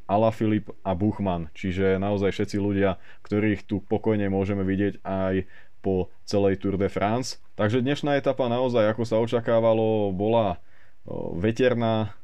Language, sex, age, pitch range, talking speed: Slovak, male, 20-39, 95-105 Hz, 130 wpm